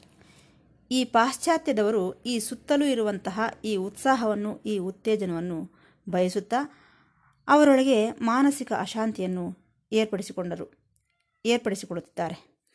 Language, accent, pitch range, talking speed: Kannada, native, 190-260 Hz, 70 wpm